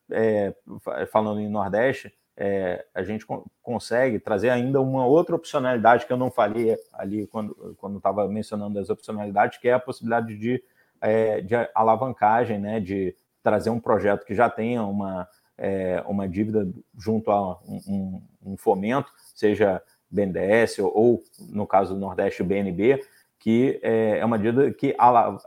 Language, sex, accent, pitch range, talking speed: Portuguese, male, Brazilian, 100-120 Hz, 160 wpm